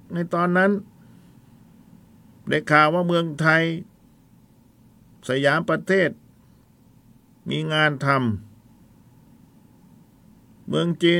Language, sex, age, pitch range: Thai, male, 50-69, 105-155 Hz